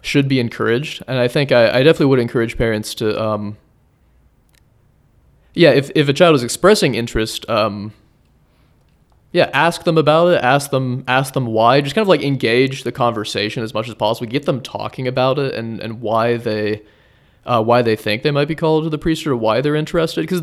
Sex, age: male, 20-39